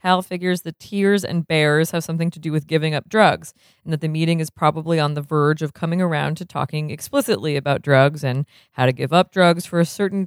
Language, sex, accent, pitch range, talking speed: English, female, American, 150-185 Hz, 235 wpm